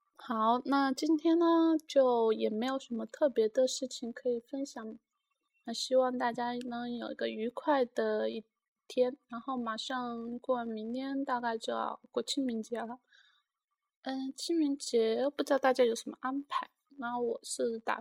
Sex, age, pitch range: female, 20-39, 230-290 Hz